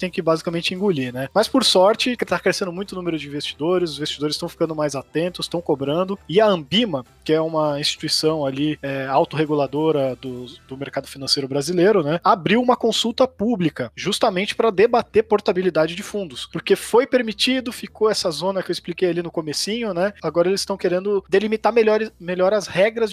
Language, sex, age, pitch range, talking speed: Portuguese, male, 20-39, 155-200 Hz, 185 wpm